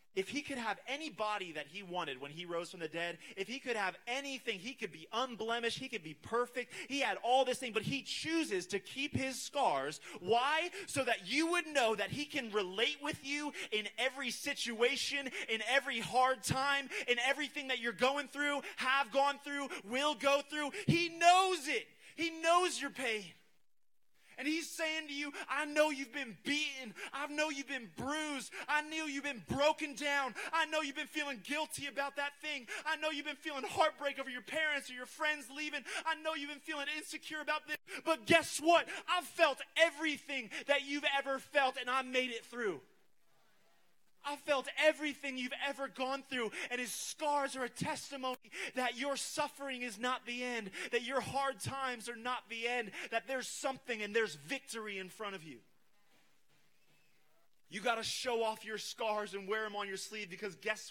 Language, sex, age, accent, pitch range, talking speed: English, male, 30-49, American, 225-290 Hz, 195 wpm